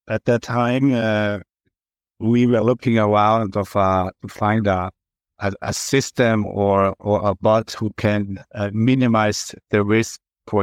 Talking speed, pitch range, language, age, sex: 150 wpm, 105-125 Hz, English, 60-79, male